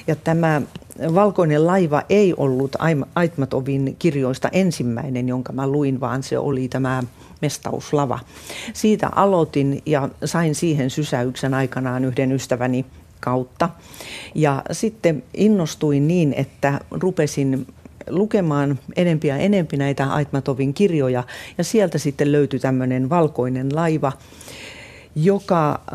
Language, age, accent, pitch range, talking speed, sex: Finnish, 40-59, native, 135-170 Hz, 110 wpm, female